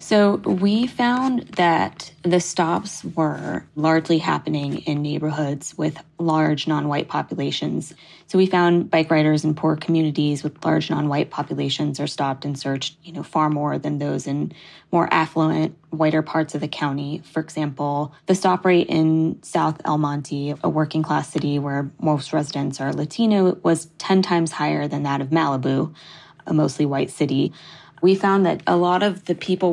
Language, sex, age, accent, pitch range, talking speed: English, female, 20-39, American, 145-165 Hz, 170 wpm